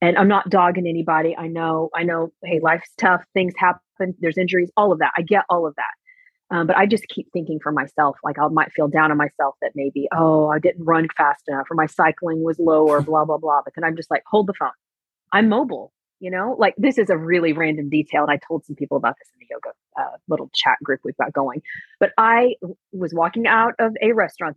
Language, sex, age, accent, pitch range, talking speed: English, female, 30-49, American, 160-200 Hz, 245 wpm